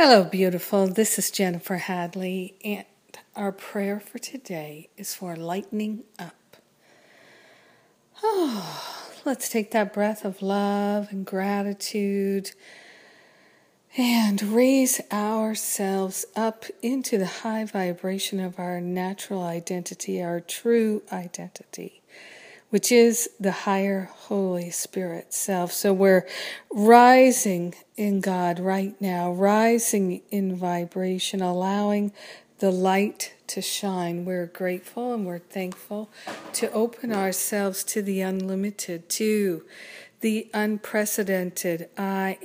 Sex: female